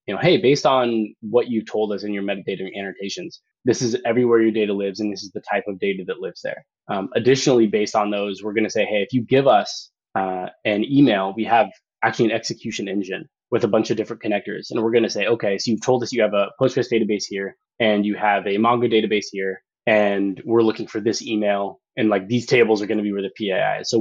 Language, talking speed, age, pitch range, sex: English, 250 wpm, 20-39, 100-115 Hz, male